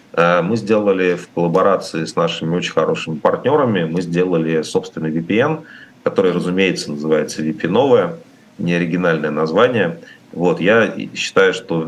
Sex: male